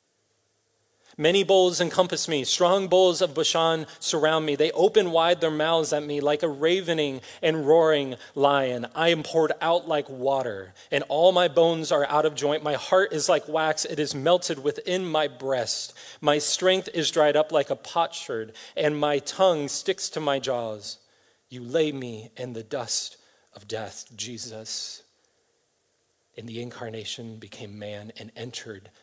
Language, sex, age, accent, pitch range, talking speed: English, male, 30-49, American, 120-165 Hz, 165 wpm